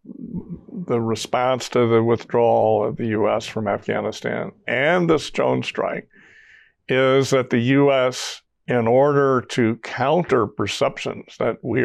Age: 60-79